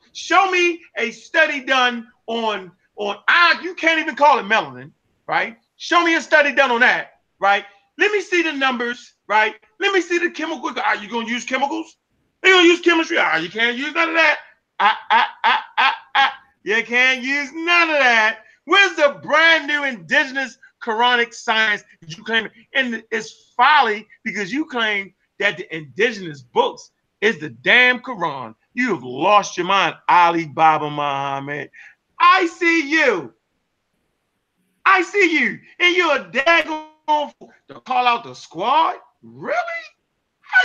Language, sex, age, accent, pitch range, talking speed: English, male, 30-49, American, 215-325 Hz, 170 wpm